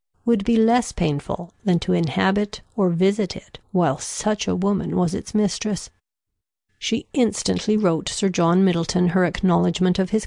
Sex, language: female, Korean